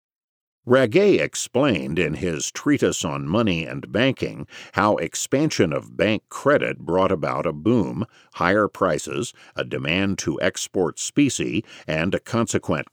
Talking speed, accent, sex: 130 wpm, American, male